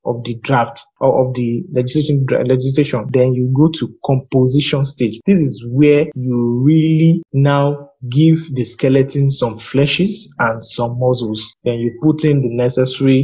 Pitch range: 125-150 Hz